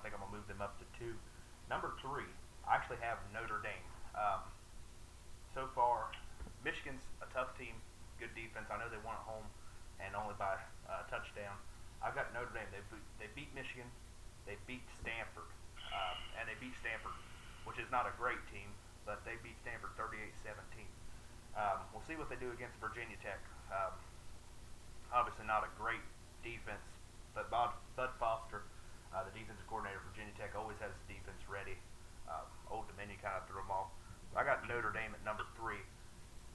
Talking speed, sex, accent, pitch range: 175 wpm, male, American, 95-115 Hz